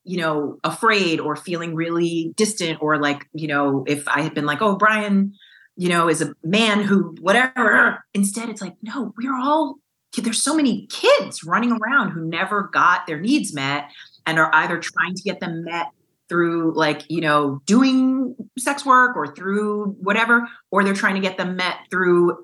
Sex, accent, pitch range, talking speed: female, American, 150-215 Hz, 185 wpm